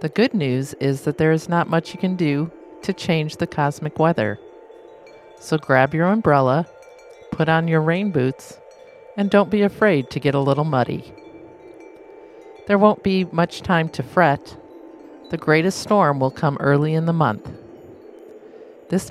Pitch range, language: 145-235 Hz, English